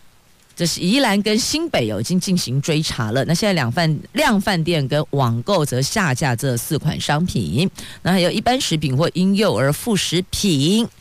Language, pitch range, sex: Chinese, 130-180 Hz, female